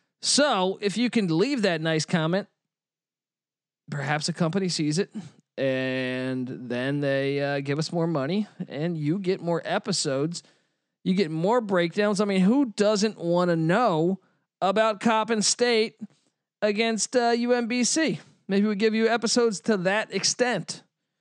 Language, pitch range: English, 150-215 Hz